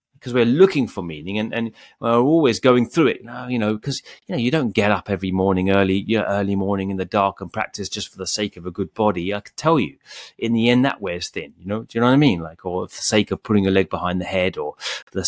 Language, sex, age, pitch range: English, male, 30-49, 95-120 Hz